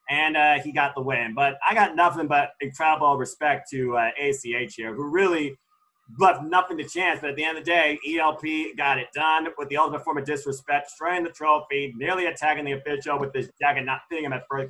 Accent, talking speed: American, 225 wpm